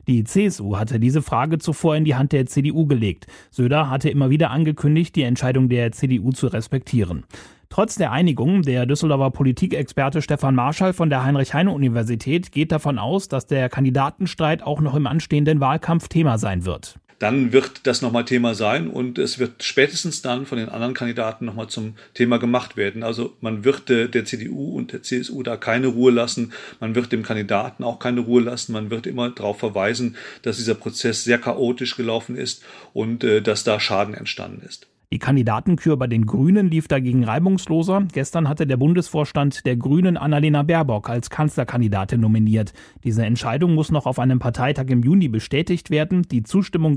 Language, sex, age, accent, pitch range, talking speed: German, male, 30-49, German, 120-155 Hz, 180 wpm